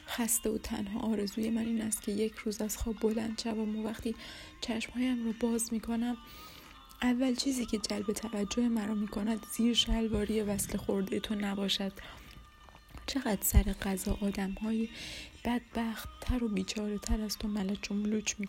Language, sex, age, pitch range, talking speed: Persian, female, 20-39, 210-230 Hz, 165 wpm